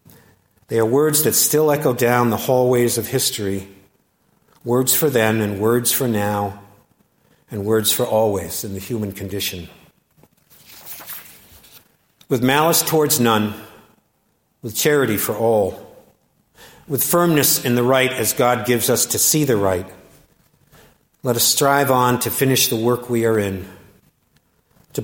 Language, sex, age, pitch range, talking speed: English, male, 50-69, 105-135 Hz, 140 wpm